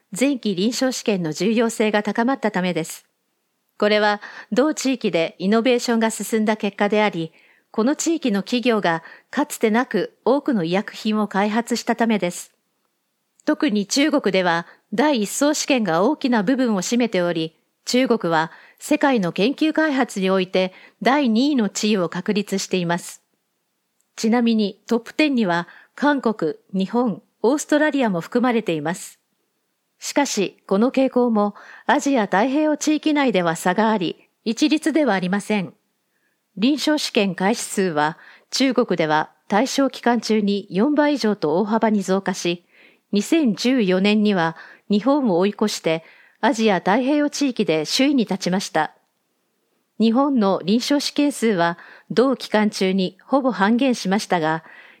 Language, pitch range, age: English, 190-255 Hz, 40-59